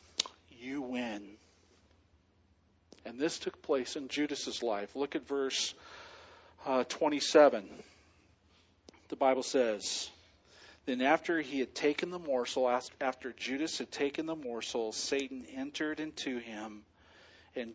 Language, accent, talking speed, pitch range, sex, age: English, American, 120 wpm, 90-135 Hz, male, 40-59